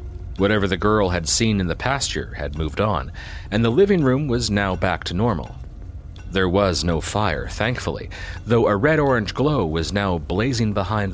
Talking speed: 180 wpm